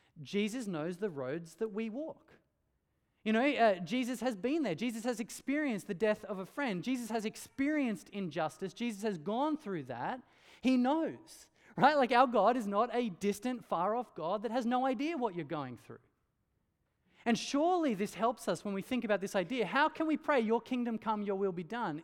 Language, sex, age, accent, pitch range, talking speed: English, male, 20-39, Australian, 185-250 Hz, 200 wpm